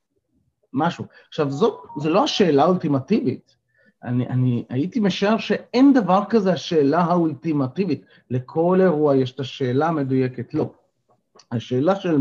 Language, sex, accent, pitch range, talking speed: Hebrew, male, native, 125-180 Hz, 125 wpm